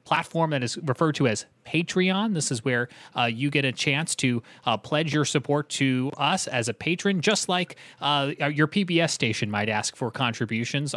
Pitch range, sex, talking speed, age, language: 120-145 Hz, male, 190 wpm, 30-49, English